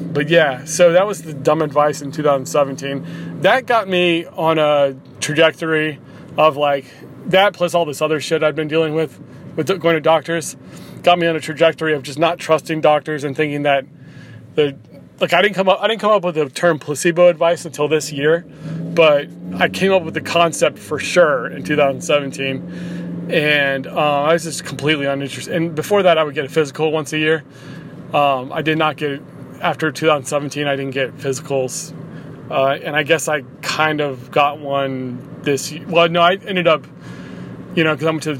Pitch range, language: 140-165 Hz, English